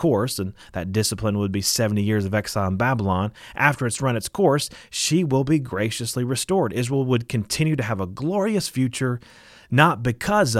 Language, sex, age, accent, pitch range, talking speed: English, male, 30-49, American, 105-130 Hz, 180 wpm